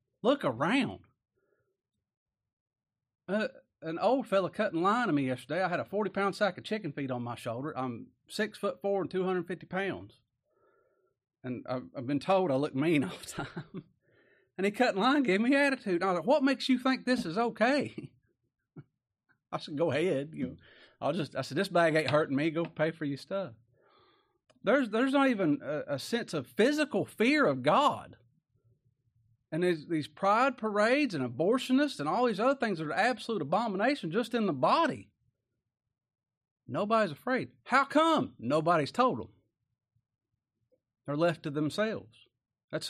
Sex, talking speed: male, 180 wpm